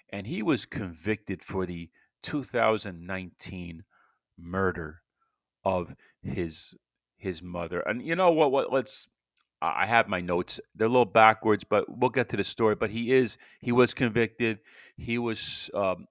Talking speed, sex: 155 wpm, male